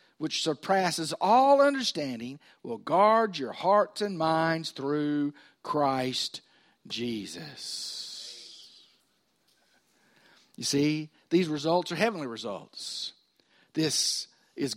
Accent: American